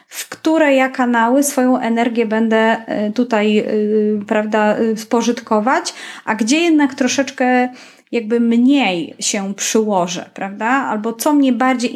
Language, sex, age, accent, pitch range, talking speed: Polish, female, 30-49, native, 220-265 Hz, 120 wpm